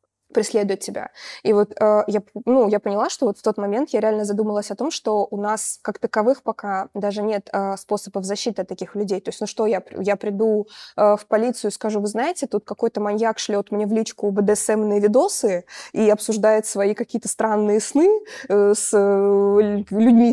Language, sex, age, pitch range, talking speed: Russian, female, 20-39, 200-225 Hz, 190 wpm